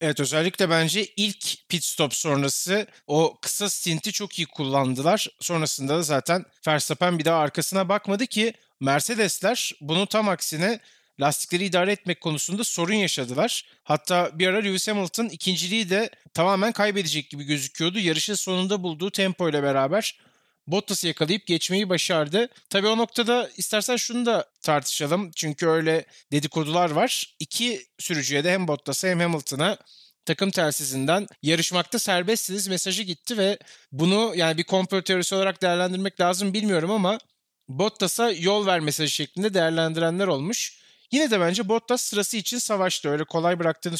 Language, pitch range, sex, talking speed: Turkish, 160-205 Hz, male, 140 wpm